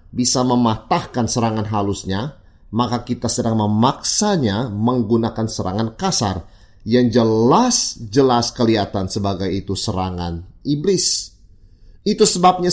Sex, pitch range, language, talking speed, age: male, 105-160 Hz, Indonesian, 95 wpm, 30-49